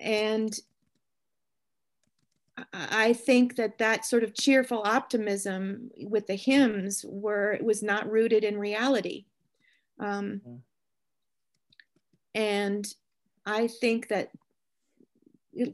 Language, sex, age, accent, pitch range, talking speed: English, female, 40-59, American, 200-225 Hz, 90 wpm